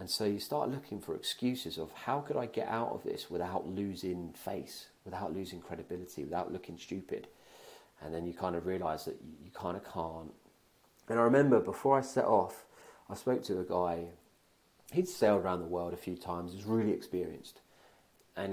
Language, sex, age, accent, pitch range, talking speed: English, male, 40-59, British, 90-115 Hz, 195 wpm